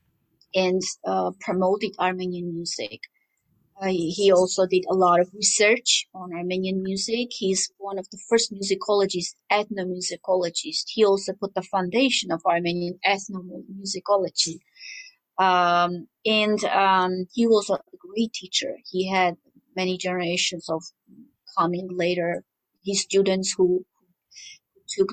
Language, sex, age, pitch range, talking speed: English, female, 30-49, 185-225 Hz, 120 wpm